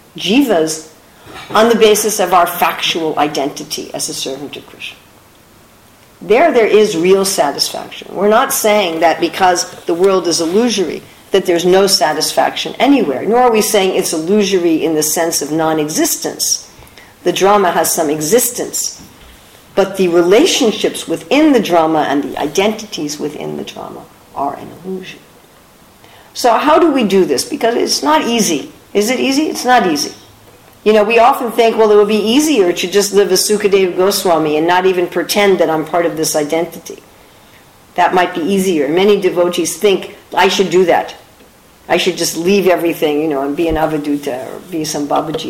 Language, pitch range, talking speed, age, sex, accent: English, 155-205 Hz, 175 wpm, 50-69, female, American